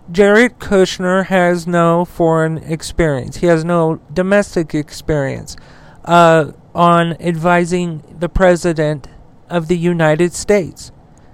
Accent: American